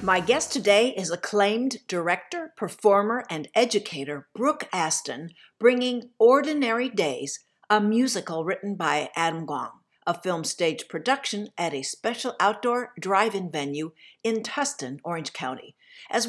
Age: 60-79